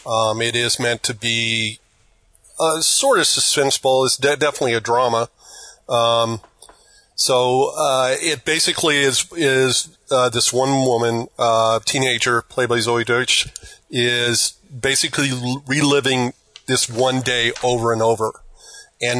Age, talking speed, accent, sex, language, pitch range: 40-59, 130 wpm, American, male, English, 115-130 Hz